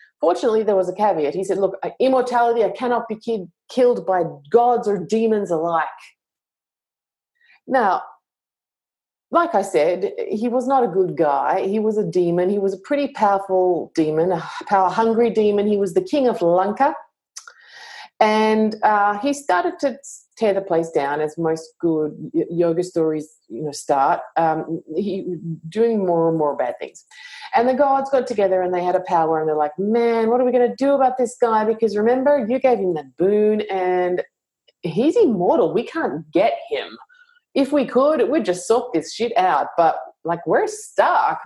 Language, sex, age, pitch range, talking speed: English, female, 30-49, 175-250 Hz, 175 wpm